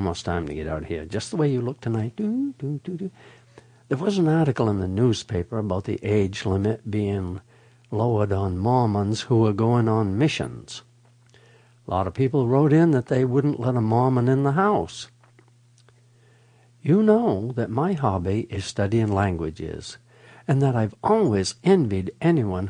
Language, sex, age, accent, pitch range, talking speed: English, male, 60-79, American, 105-135 Hz, 165 wpm